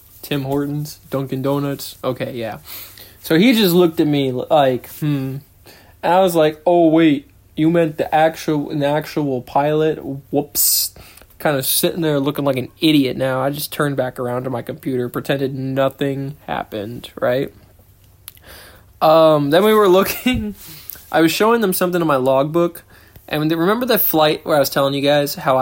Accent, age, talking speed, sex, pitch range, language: American, 20-39, 165 wpm, male, 130-155 Hz, English